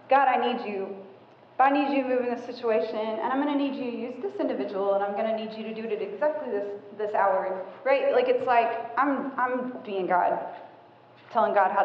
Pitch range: 200-245 Hz